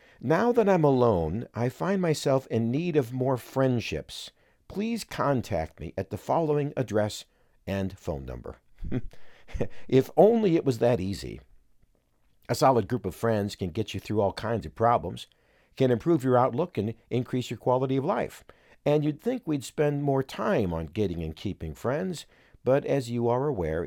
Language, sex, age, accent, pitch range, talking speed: English, male, 50-69, American, 95-135 Hz, 170 wpm